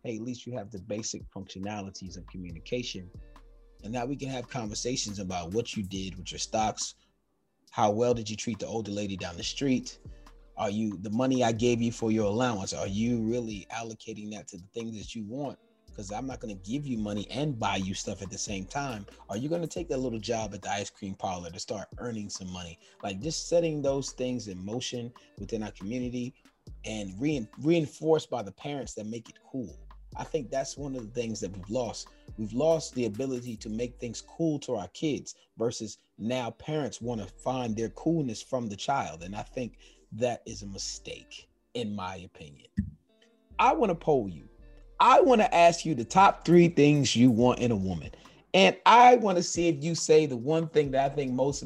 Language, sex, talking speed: English, male, 210 wpm